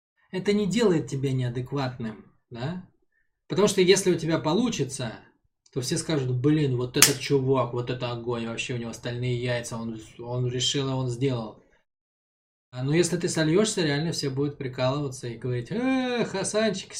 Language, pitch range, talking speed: Russian, 125-175 Hz, 160 wpm